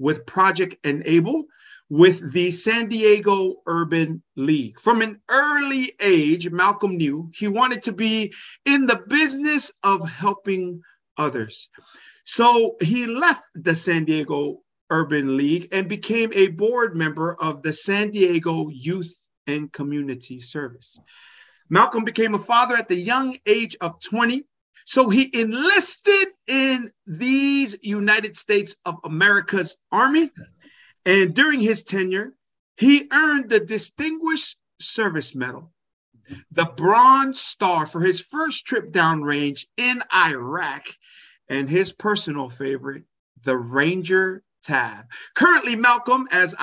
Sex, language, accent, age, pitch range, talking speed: male, English, American, 50-69, 165-245 Hz, 125 wpm